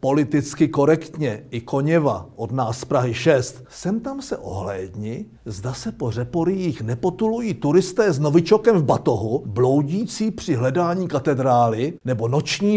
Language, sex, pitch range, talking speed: Czech, male, 125-175 Hz, 135 wpm